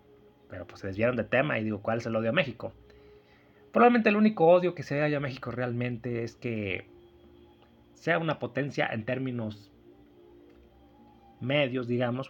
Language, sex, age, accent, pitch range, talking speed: Spanish, male, 30-49, Mexican, 105-130 Hz, 160 wpm